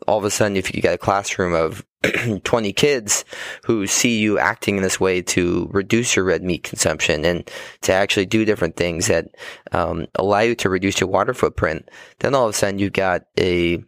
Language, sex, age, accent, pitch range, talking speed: English, male, 20-39, American, 90-105 Hz, 210 wpm